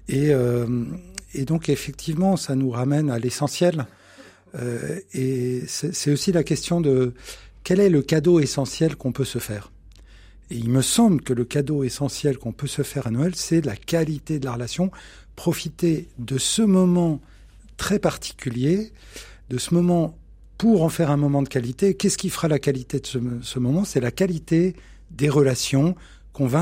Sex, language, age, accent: male, French, 50-69, French